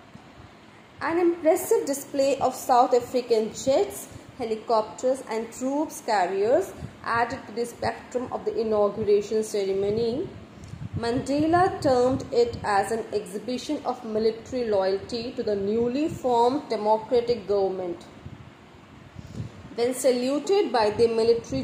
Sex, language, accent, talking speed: female, English, Indian, 110 wpm